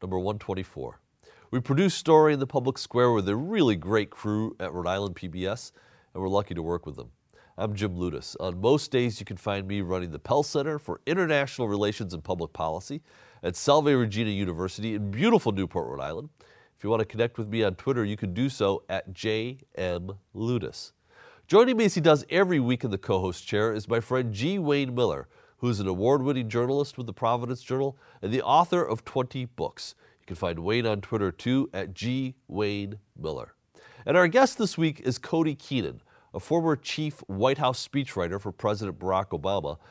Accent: American